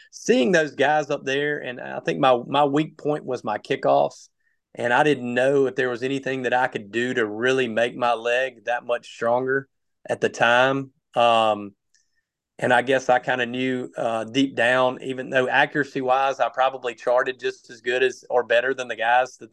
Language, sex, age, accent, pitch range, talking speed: English, male, 30-49, American, 110-135 Hz, 200 wpm